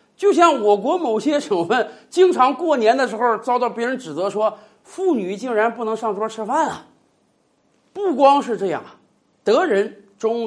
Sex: male